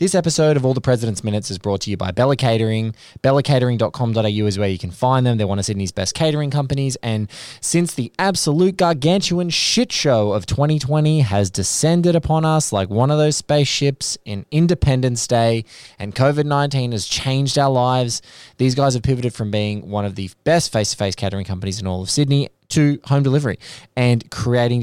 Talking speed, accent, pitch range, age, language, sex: 185 wpm, Australian, 105-145 Hz, 20-39, English, male